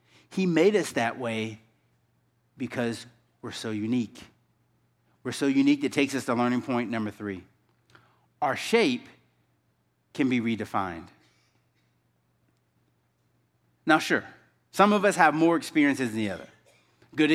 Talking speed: 130 wpm